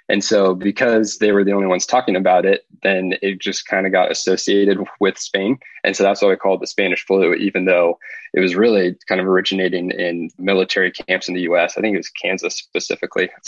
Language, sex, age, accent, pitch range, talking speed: English, male, 20-39, American, 90-100 Hz, 225 wpm